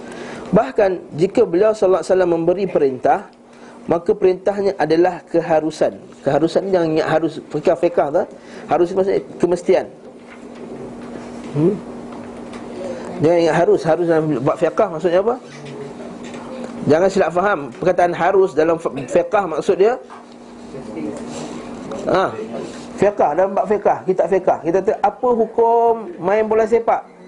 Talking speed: 115 wpm